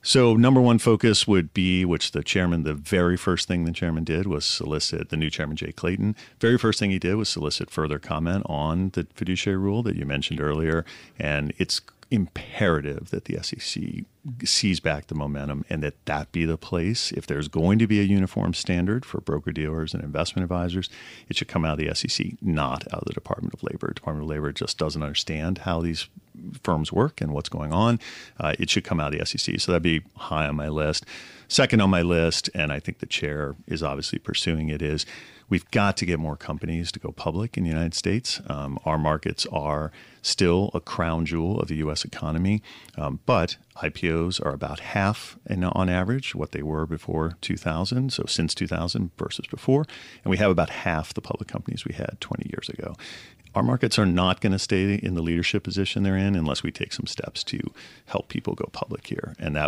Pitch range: 75-100 Hz